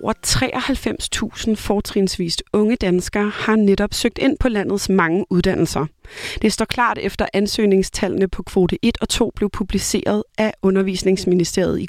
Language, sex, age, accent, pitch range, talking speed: Danish, female, 30-49, native, 200-235 Hz, 140 wpm